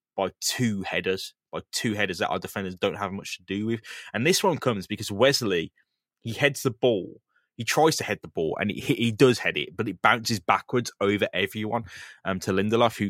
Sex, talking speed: male, 210 wpm